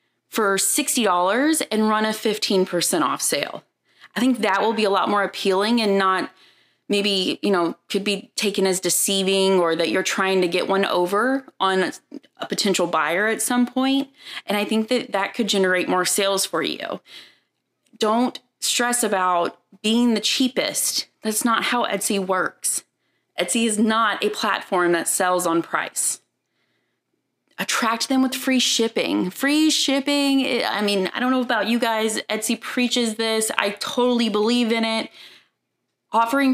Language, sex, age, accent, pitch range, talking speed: English, female, 20-39, American, 180-230 Hz, 160 wpm